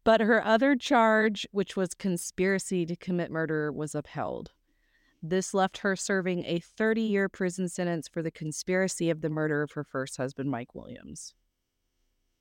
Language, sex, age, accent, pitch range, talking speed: English, female, 30-49, American, 150-180 Hz, 155 wpm